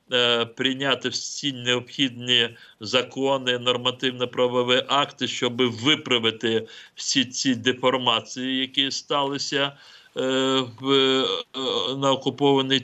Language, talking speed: Ukrainian, 80 wpm